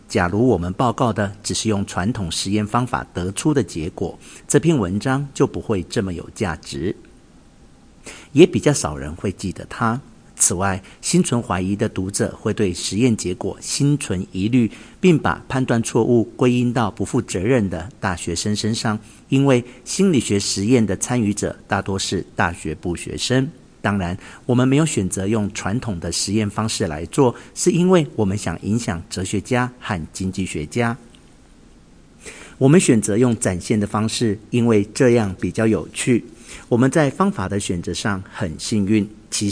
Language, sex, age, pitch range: Chinese, male, 50-69, 100-125 Hz